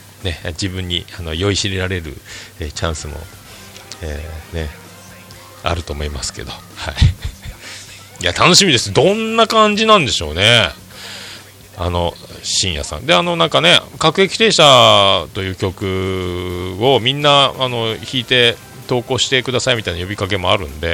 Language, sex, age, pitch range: Japanese, male, 40-59, 85-115 Hz